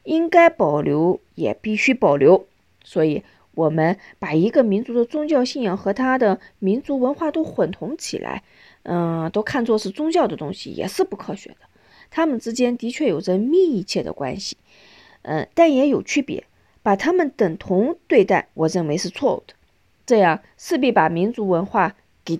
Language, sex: Chinese, female